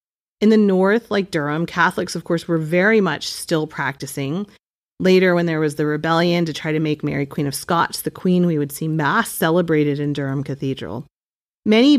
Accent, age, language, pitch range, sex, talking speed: American, 30-49, English, 155-185 Hz, female, 190 wpm